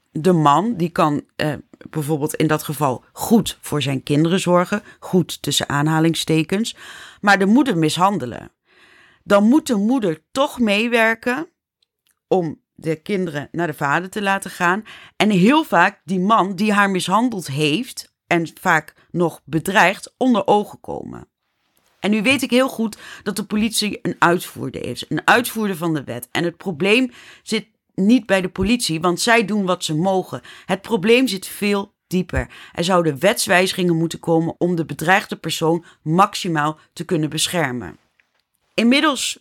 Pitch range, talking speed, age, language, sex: 160-210 Hz, 155 wpm, 30-49, Dutch, female